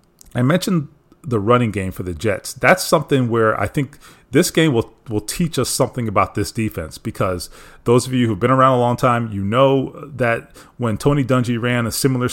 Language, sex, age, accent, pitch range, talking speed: English, male, 30-49, American, 110-140 Hz, 210 wpm